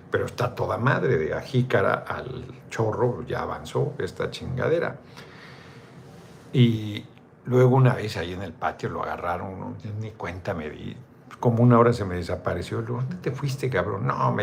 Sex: male